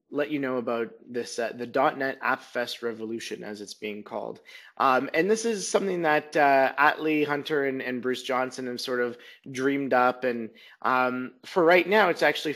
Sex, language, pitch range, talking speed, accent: male, English, 120-165 Hz, 180 wpm, American